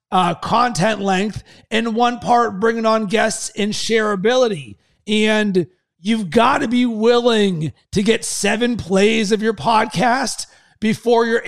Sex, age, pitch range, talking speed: male, 30-49, 195-235 Hz, 135 wpm